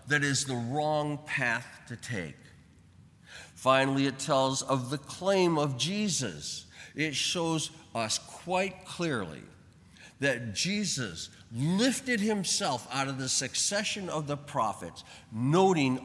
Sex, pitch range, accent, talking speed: male, 125-165 Hz, American, 120 wpm